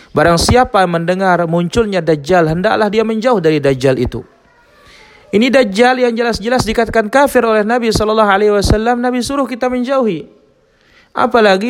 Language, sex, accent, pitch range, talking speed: Indonesian, male, native, 130-205 Hz, 130 wpm